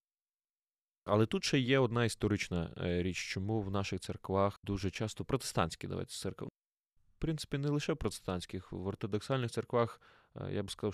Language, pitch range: Ukrainian, 95-125 Hz